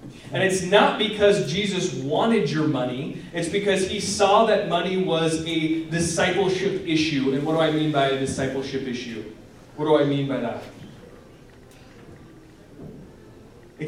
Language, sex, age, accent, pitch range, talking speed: English, male, 20-39, American, 145-185 Hz, 145 wpm